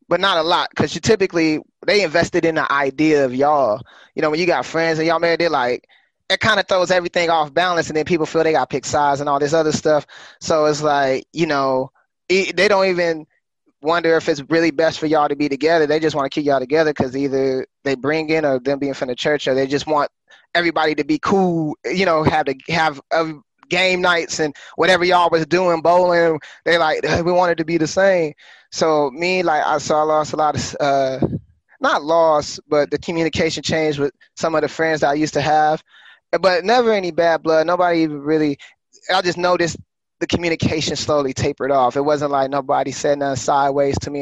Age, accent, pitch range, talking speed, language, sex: 20-39, American, 140-165 Hz, 220 wpm, English, male